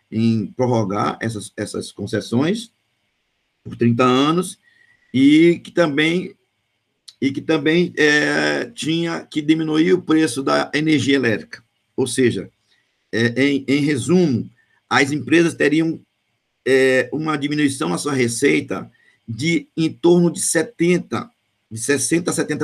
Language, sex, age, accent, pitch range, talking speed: Portuguese, male, 50-69, Brazilian, 120-170 Hz, 120 wpm